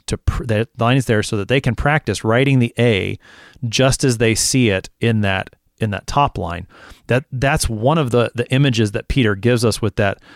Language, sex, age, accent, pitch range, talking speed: English, male, 30-49, American, 100-130 Hz, 220 wpm